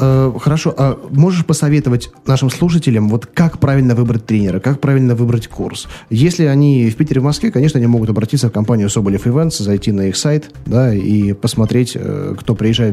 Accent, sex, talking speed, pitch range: native, male, 175 wpm, 105-130 Hz